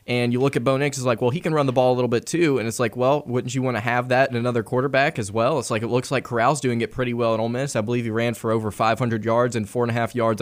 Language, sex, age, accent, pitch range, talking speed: English, male, 20-39, American, 115-135 Hz, 345 wpm